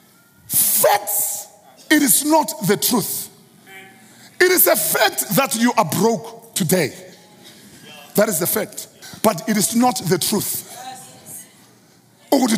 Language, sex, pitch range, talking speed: English, male, 200-280 Hz, 125 wpm